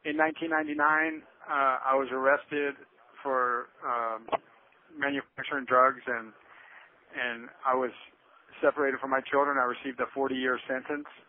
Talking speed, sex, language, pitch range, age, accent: 120 wpm, male, English, 120-135 Hz, 40-59, American